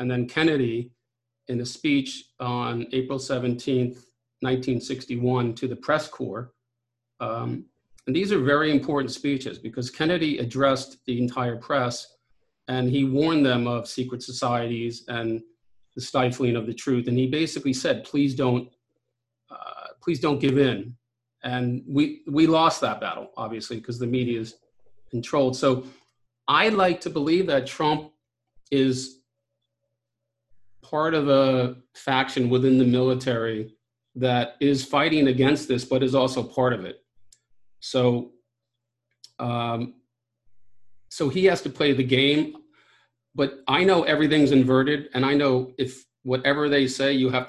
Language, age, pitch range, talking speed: English, 50-69, 120-140 Hz, 145 wpm